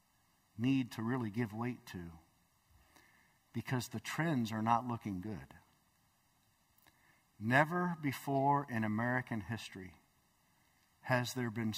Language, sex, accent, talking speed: English, male, American, 105 wpm